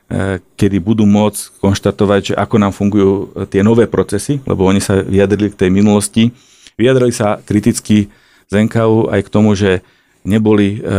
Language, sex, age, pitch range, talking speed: Slovak, male, 40-59, 95-105 Hz, 155 wpm